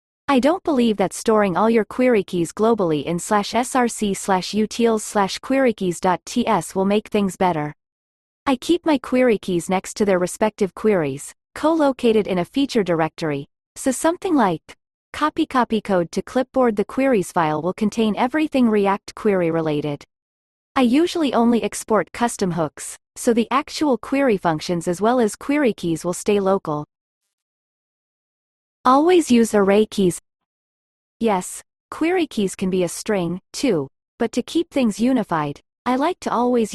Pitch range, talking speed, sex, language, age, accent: 185-245 Hz, 150 wpm, female, English, 30-49, American